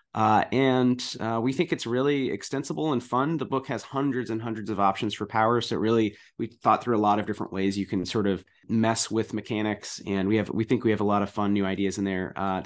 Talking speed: 250 wpm